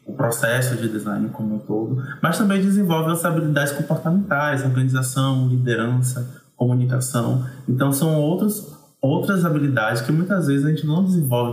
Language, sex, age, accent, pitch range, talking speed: Portuguese, male, 20-39, Brazilian, 115-135 Hz, 140 wpm